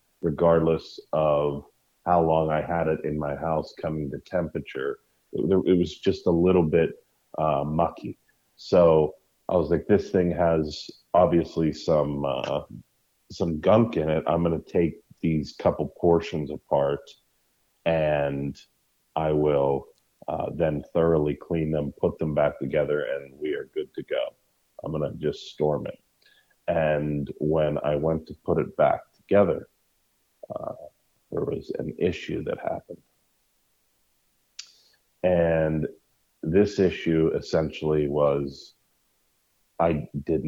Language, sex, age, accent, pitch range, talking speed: English, male, 40-59, American, 75-90 Hz, 130 wpm